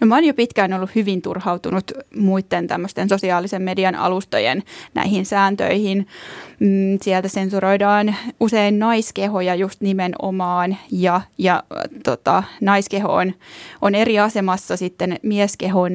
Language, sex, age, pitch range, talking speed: Finnish, female, 20-39, 190-230 Hz, 110 wpm